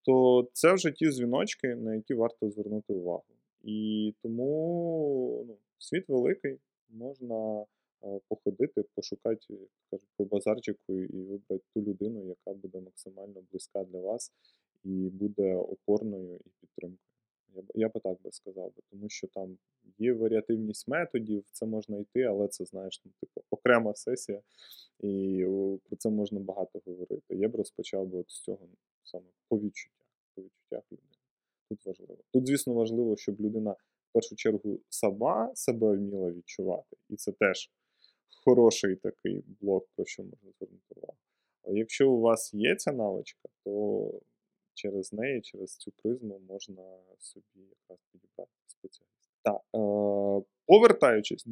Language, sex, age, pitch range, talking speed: Ukrainian, male, 20-39, 100-125 Hz, 140 wpm